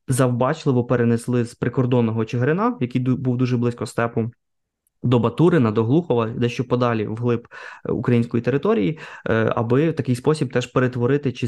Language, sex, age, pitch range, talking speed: Ukrainian, male, 20-39, 115-135 Hz, 135 wpm